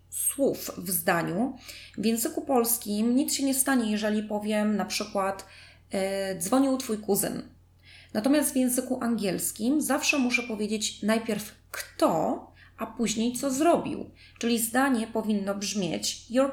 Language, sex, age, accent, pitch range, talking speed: Polish, female, 20-39, native, 205-255 Hz, 125 wpm